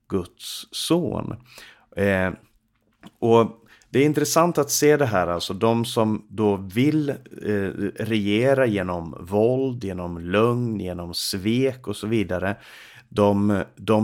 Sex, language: male, Swedish